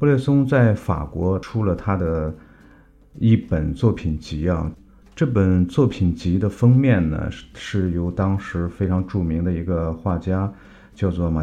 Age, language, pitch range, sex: 50-69, Chinese, 85-115 Hz, male